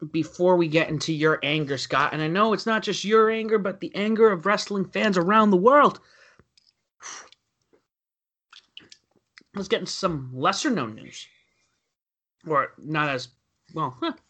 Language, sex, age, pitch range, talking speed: English, male, 30-49, 155-210 Hz, 145 wpm